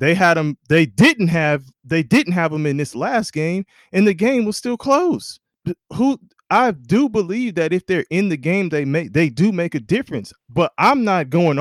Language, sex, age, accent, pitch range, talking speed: English, male, 20-39, American, 130-185 Hz, 210 wpm